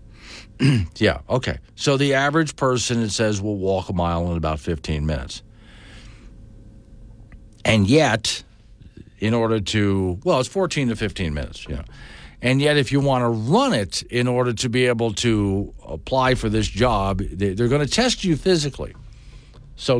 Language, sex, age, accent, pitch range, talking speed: English, male, 50-69, American, 105-130 Hz, 160 wpm